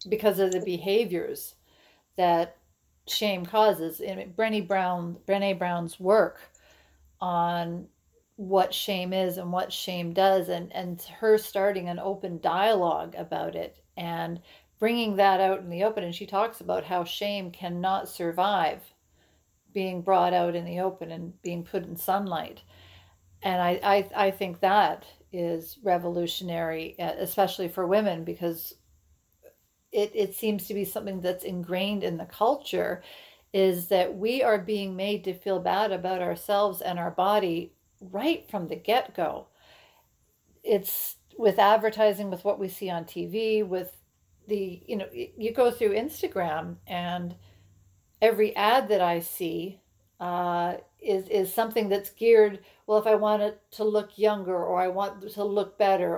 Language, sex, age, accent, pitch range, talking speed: English, female, 40-59, American, 175-210 Hz, 145 wpm